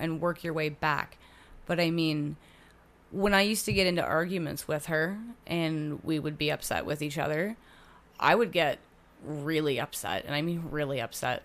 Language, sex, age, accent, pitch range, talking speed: English, female, 30-49, American, 150-170 Hz, 185 wpm